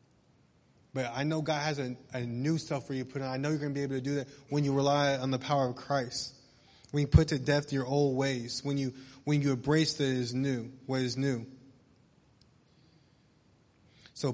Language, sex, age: English, male, 20-39